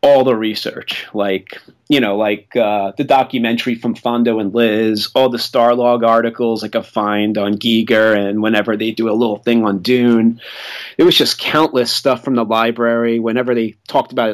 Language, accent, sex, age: English, American, male, 30-49